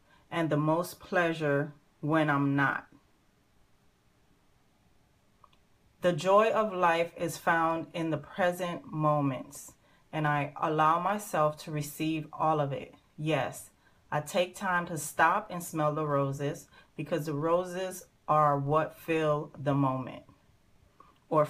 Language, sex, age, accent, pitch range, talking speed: English, female, 30-49, American, 150-175 Hz, 125 wpm